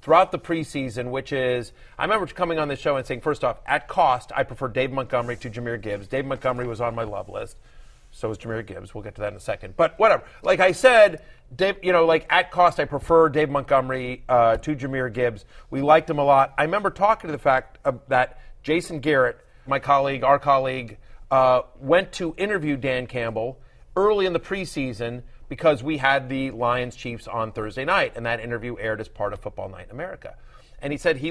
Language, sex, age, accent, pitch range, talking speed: English, male, 30-49, American, 125-160 Hz, 220 wpm